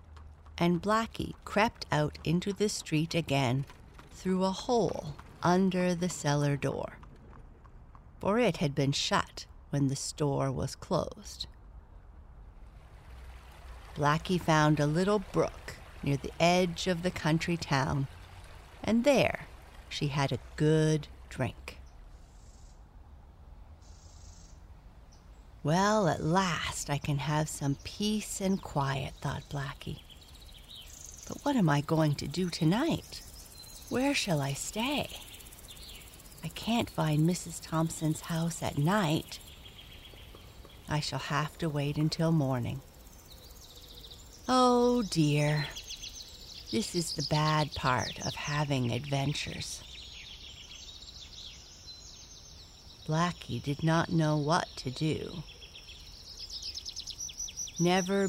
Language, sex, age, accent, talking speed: English, female, 50-69, American, 105 wpm